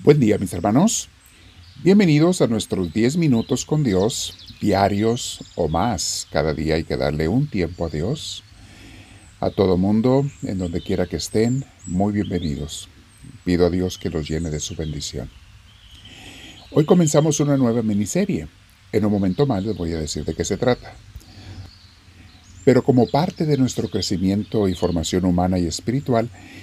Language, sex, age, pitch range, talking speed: Spanish, male, 50-69, 90-115 Hz, 160 wpm